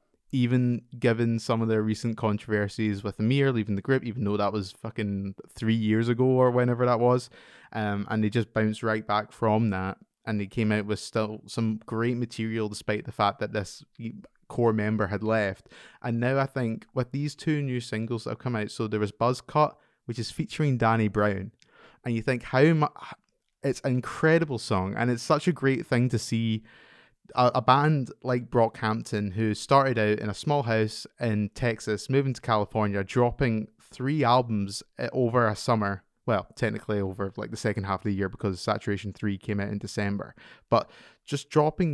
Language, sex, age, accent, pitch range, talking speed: English, male, 20-39, British, 105-125 Hz, 190 wpm